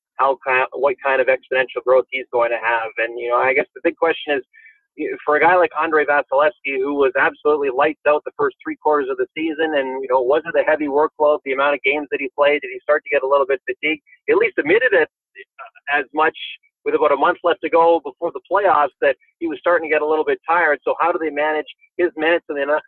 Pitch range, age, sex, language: 130-185 Hz, 30-49, male, English